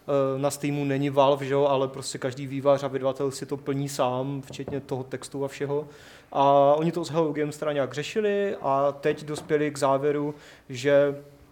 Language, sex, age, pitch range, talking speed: Czech, male, 20-39, 140-150 Hz, 170 wpm